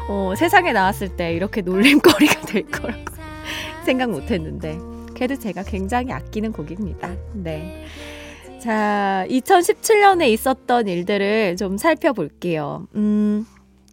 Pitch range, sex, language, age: 185-290 Hz, female, Korean, 20-39